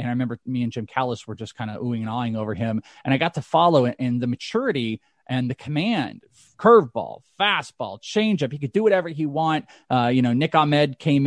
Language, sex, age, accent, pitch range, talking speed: English, male, 30-49, American, 125-170 Hz, 230 wpm